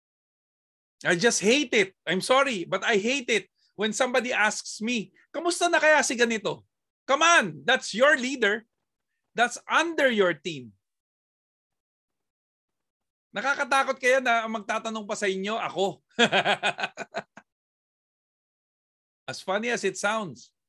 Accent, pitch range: native, 180-240 Hz